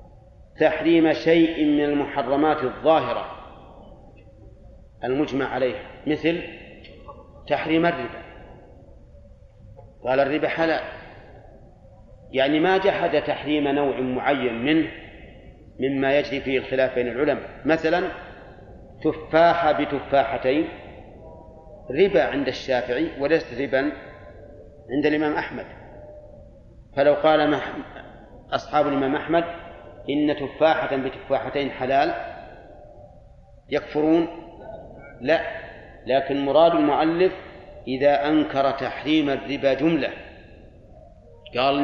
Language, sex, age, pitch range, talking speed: Arabic, male, 40-59, 120-155 Hz, 80 wpm